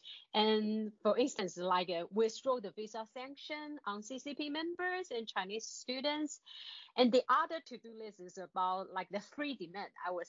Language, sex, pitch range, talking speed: English, female, 190-260 Hz, 165 wpm